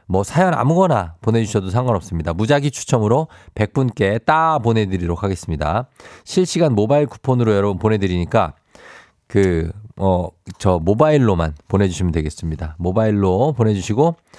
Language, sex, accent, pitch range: Korean, male, native, 95-135 Hz